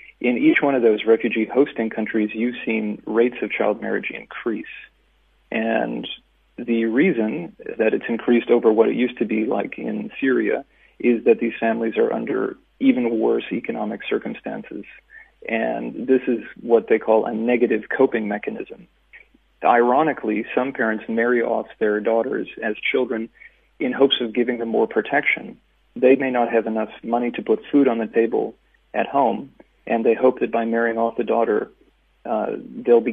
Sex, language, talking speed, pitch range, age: male, English, 165 wpm, 115-145 Hz, 40-59